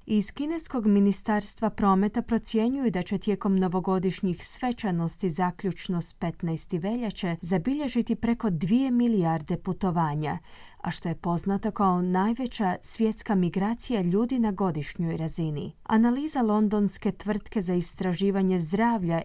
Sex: female